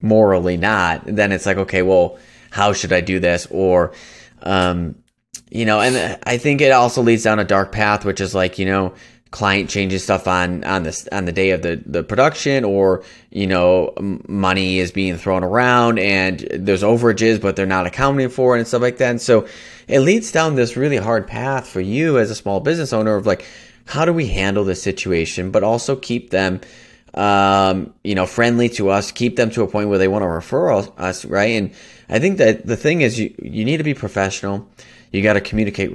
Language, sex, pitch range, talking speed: English, male, 90-115 Hz, 210 wpm